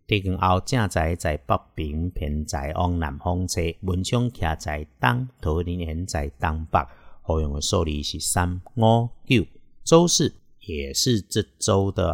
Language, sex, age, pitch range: Chinese, male, 50-69, 85-110 Hz